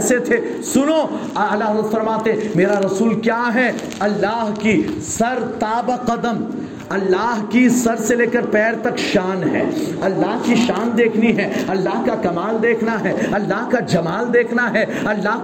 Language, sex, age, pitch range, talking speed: Urdu, male, 50-69, 210-265 Hz, 155 wpm